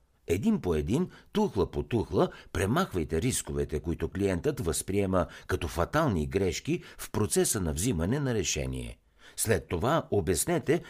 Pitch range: 80-110 Hz